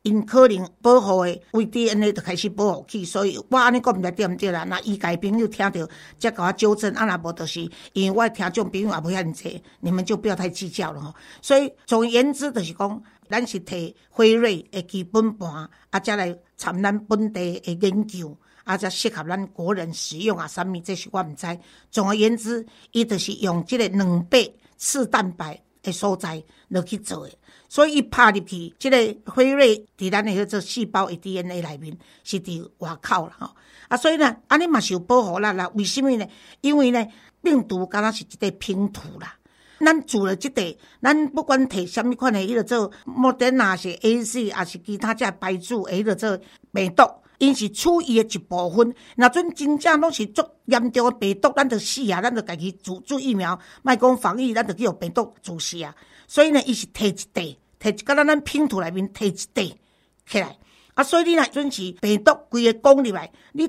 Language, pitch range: Chinese, 185-245 Hz